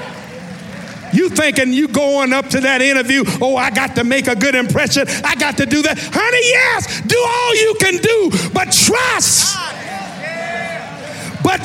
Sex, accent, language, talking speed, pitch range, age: male, American, English, 160 wpm, 270-435 Hz, 50-69